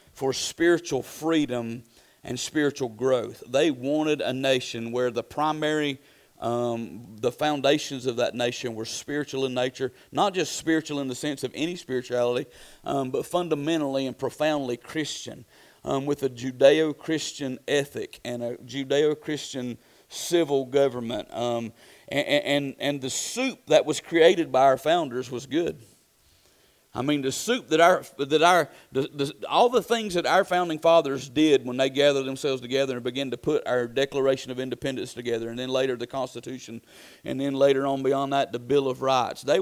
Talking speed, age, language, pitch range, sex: 165 wpm, 40-59, English, 125-150 Hz, male